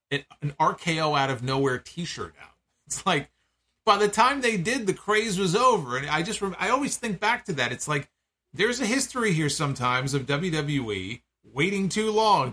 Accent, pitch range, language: American, 130-185 Hz, English